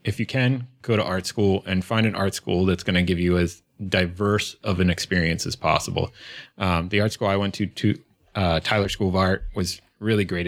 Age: 30-49